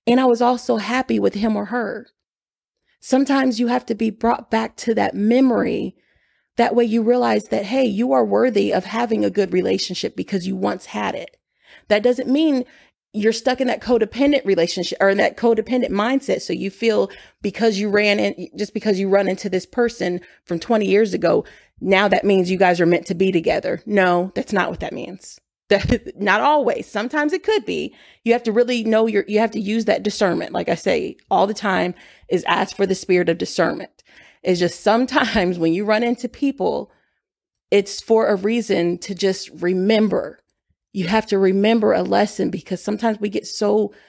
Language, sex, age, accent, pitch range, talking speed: English, female, 30-49, American, 190-235 Hz, 195 wpm